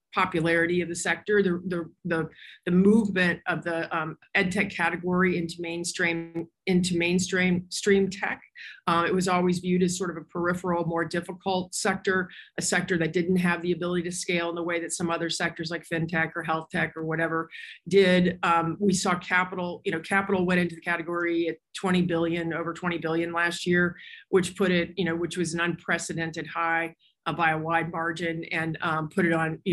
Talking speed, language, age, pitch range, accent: 200 wpm, English, 40-59, 165-185 Hz, American